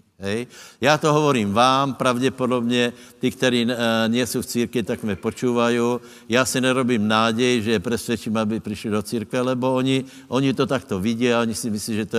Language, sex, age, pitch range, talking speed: Slovak, male, 60-79, 105-125 Hz, 170 wpm